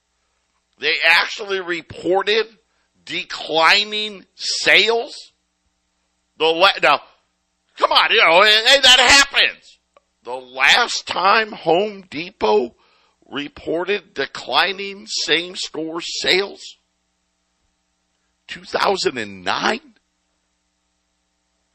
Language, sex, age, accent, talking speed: English, male, 50-69, American, 65 wpm